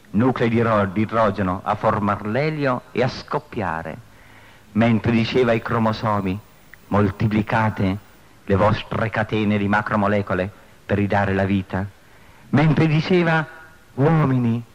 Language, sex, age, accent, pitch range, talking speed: Italian, male, 50-69, native, 105-150 Hz, 115 wpm